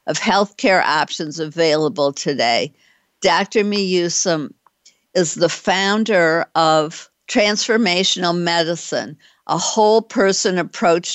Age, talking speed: 60-79, 90 wpm